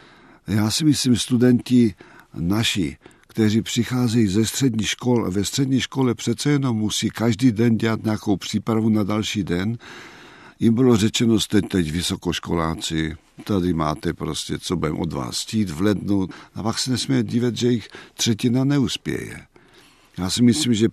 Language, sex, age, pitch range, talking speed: Czech, male, 50-69, 95-115 Hz, 155 wpm